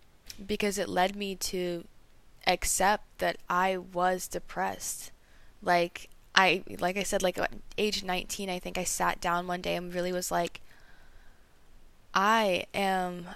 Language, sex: English, female